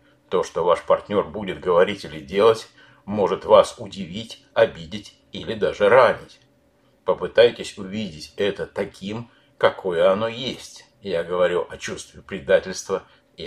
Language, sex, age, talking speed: Russian, male, 60-79, 125 wpm